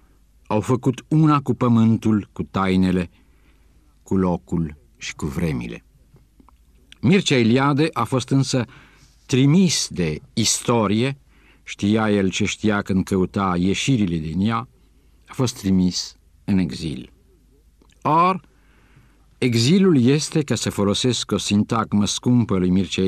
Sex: male